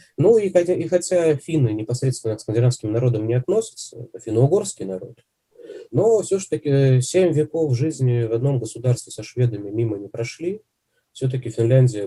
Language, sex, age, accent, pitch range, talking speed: Russian, male, 20-39, native, 110-140 Hz, 150 wpm